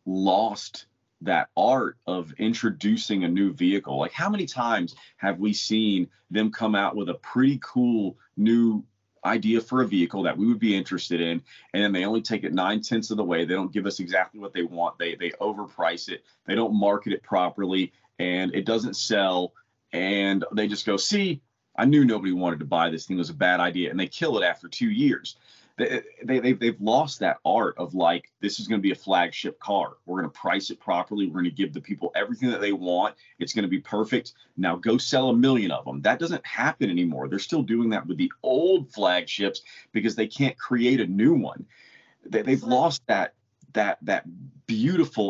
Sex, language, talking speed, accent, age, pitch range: male, English, 210 wpm, American, 30-49, 95-130 Hz